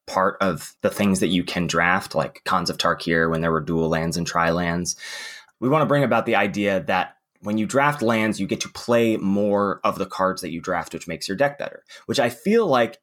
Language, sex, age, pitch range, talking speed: English, male, 20-39, 95-135 Hz, 240 wpm